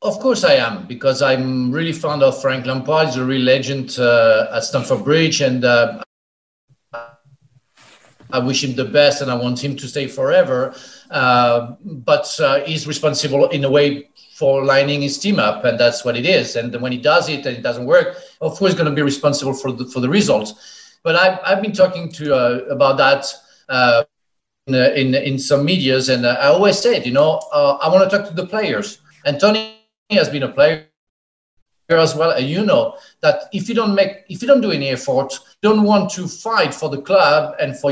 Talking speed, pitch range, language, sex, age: 210 wpm, 135-220 Hz, English, male, 50-69